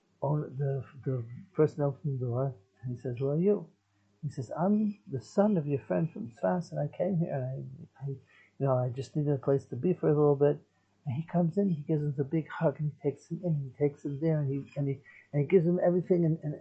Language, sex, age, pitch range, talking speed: English, male, 60-79, 135-170 Hz, 265 wpm